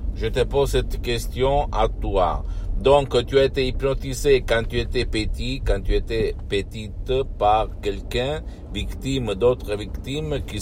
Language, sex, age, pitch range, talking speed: Italian, male, 60-79, 85-125 Hz, 145 wpm